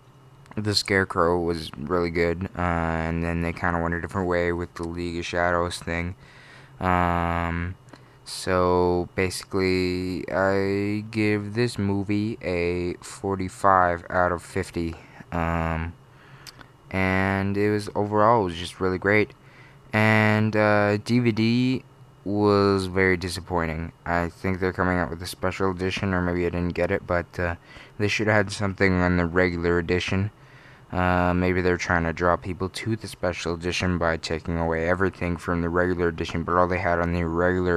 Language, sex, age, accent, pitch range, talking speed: English, male, 20-39, American, 85-100 Hz, 160 wpm